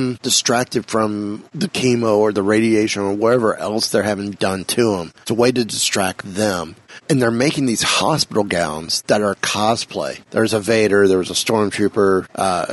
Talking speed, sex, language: 175 wpm, male, English